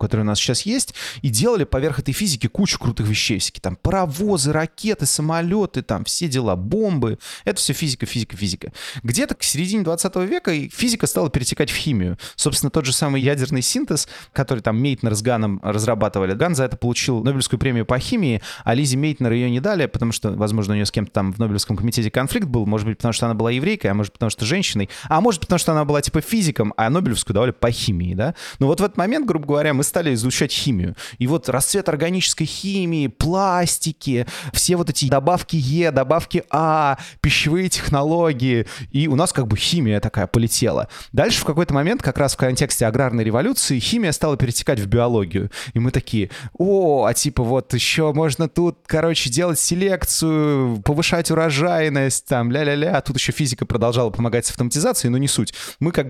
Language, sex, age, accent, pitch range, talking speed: Russian, male, 20-39, native, 115-160 Hz, 195 wpm